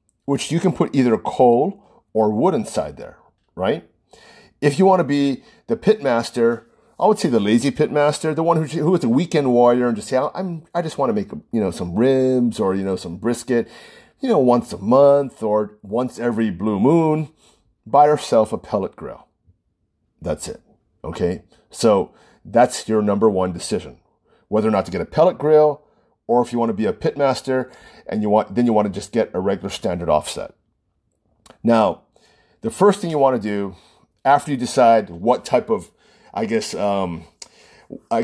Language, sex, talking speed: English, male, 190 wpm